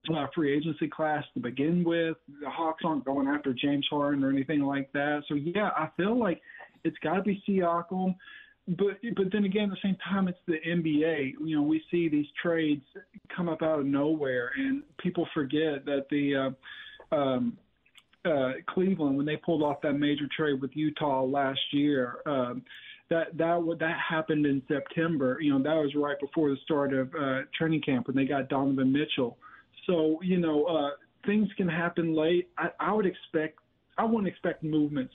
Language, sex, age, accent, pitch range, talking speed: English, male, 40-59, American, 140-170 Hz, 190 wpm